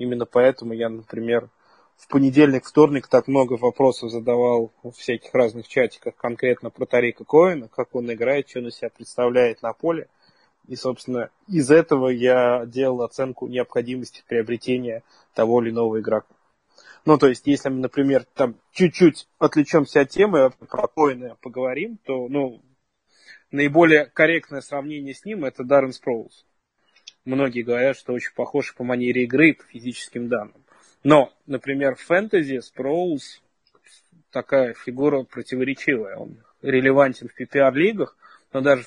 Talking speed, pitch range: 140 wpm, 120-145 Hz